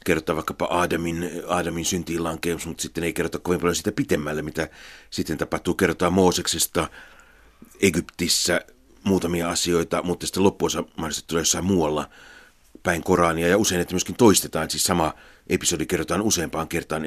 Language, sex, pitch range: Finnish, male, 80-95 Hz